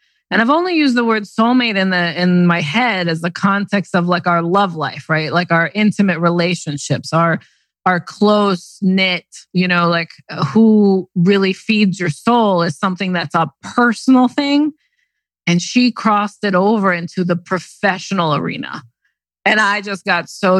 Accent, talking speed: American, 165 wpm